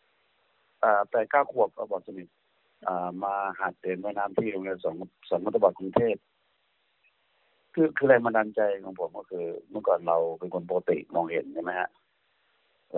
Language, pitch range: Thai, 95-120 Hz